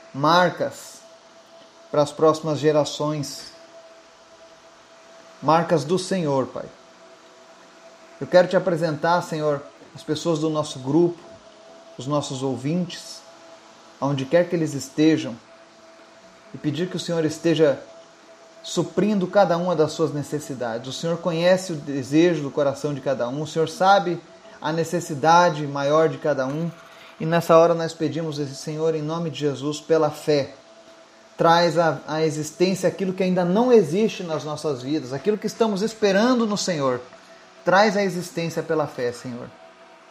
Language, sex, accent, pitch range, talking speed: Portuguese, male, Brazilian, 150-180 Hz, 140 wpm